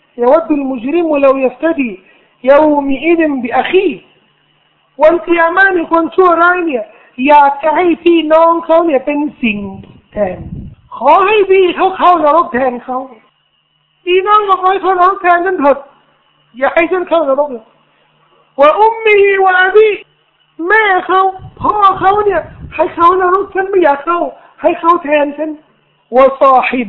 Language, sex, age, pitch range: Thai, male, 50-69, 240-350 Hz